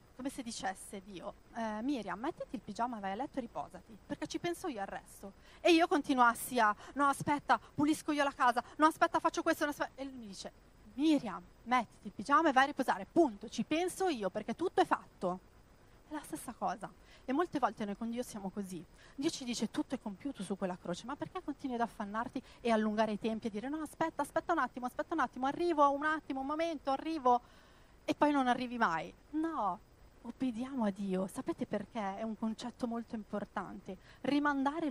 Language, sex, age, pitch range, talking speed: Italian, female, 40-59, 220-295 Hz, 205 wpm